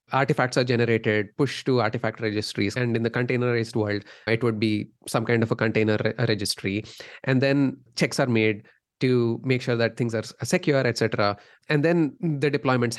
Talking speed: 180 wpm